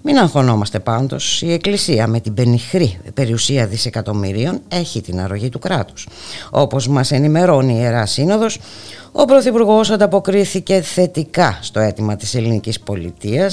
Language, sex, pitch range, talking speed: Greek, female, 105-170 Hz, 135 wpm